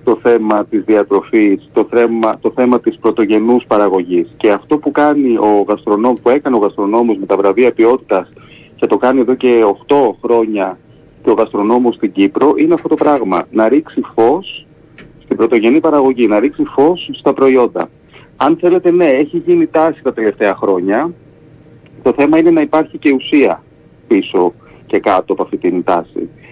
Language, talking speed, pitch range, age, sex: Greek, 170 wpm, 125-170 Hz, 30-49, male